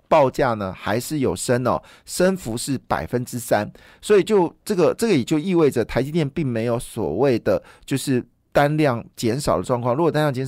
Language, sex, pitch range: Chinese, male, 115-150 Hz